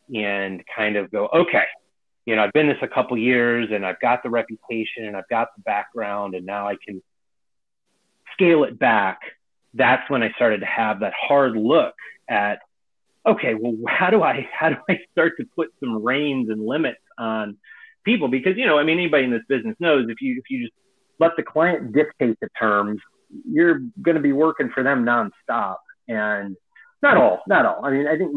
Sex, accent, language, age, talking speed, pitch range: male, American, English, 30-49, 205 wpm, 105-155 Hz